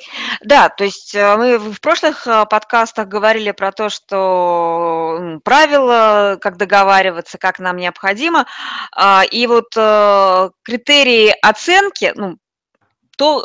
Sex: female